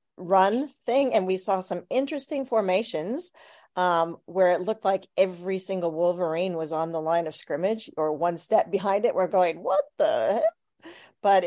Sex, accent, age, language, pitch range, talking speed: female, American, 40-59, English, 165-200 Hz, 170 wpm